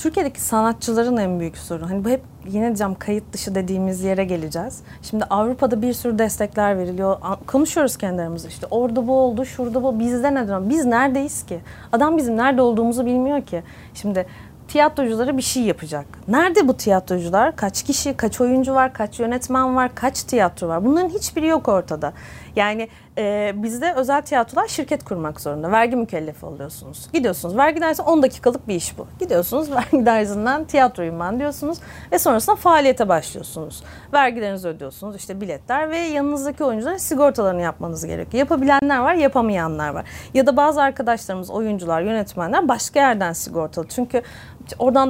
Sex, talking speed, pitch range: female, 155 wpm, 195-275 Hz